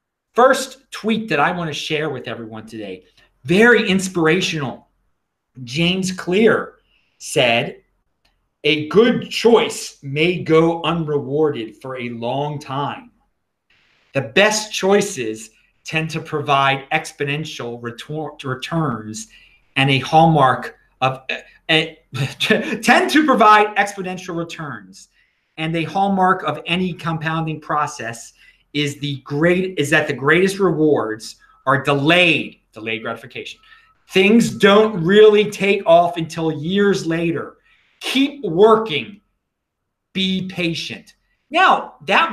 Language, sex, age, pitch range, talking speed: English, male, 40-59, 145-200 Hz, 110 wpm